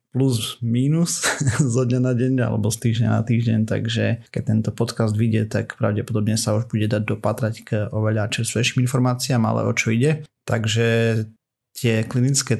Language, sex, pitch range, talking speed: Slovak, male, 110-125 Hz, 160 wpm